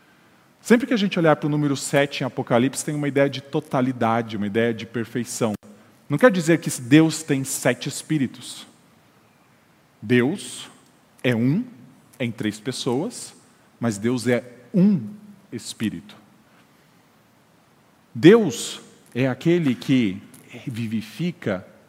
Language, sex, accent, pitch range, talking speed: Portuguese, male, Brazilian, 115-150 Hz, 125 wpm